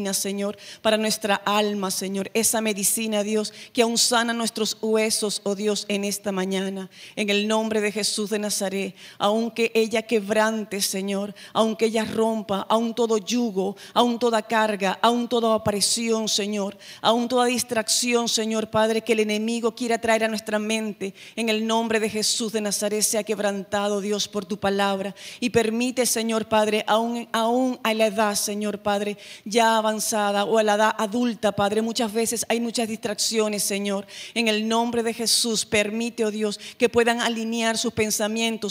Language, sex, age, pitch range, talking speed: Spanish, female, 40-59, 205-225 Hz, 165 wpm